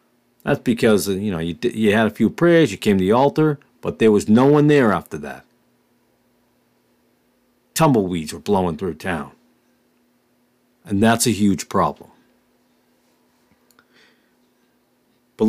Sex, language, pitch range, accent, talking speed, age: male, English, 90-125 Hz, American, 135 wpm, 50-69